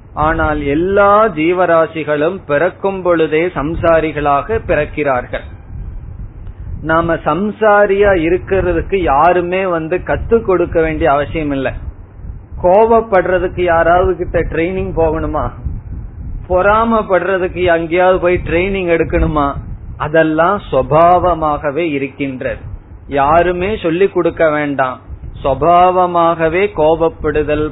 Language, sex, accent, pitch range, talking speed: Tamil, male, native, 145-185 Hz, 75 wpm